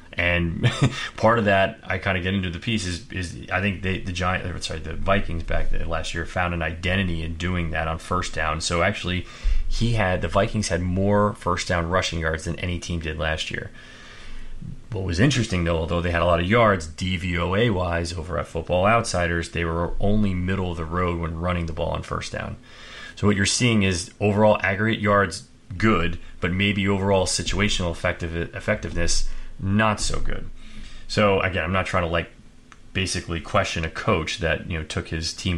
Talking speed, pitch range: 195 wpm, 85-100 Hz